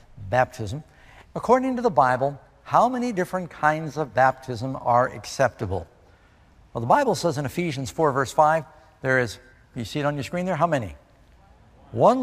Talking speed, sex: 165 wpm, male